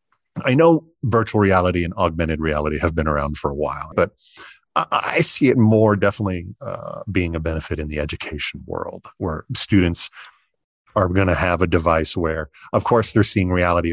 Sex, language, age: male, English, 40-59